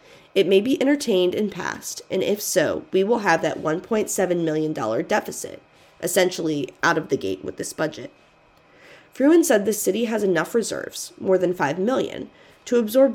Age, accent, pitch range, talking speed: 20-39, American, 165-230 Hz, 175 wpm